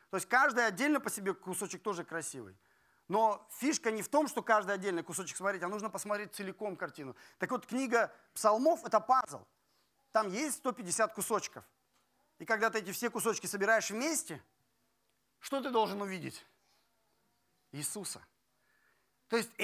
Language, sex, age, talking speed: Russian, male, 30-49, 150 wpm